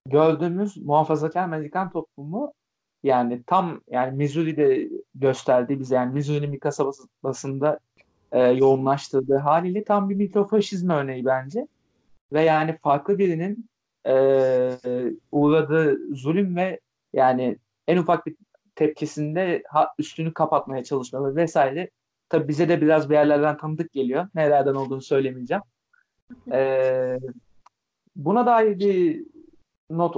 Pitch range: 140-195 Hz